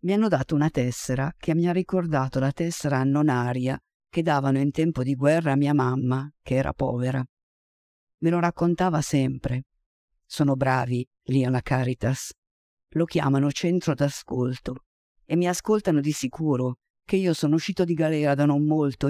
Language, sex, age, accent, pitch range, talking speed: Italian, female, 50-69, native, 135-170 Hz, 160 wpm